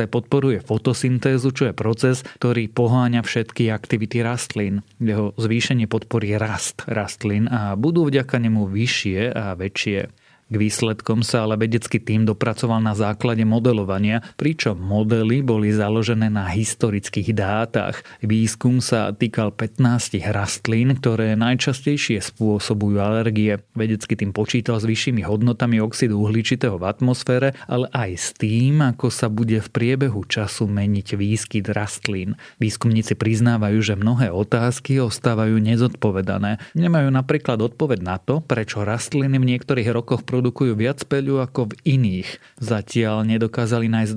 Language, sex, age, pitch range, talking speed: Slovak, male, 30-49, 105-125 Hz, 130 wpm